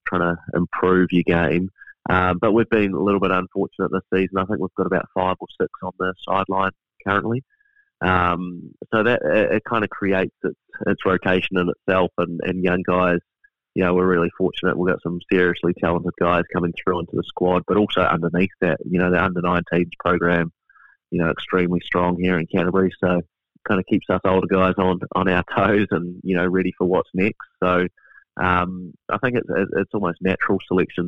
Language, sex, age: English, male, 20-39